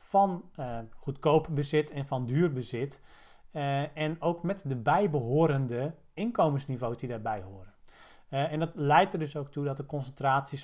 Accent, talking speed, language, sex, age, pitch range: Dutch, 165 wpm, Dutch, male, 40-59, 125-155 Hz